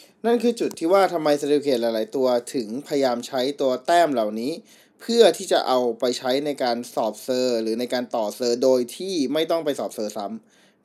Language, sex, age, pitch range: Thai, male, 20-39, 125-165 Hz